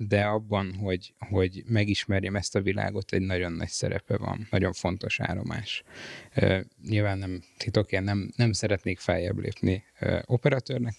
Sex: male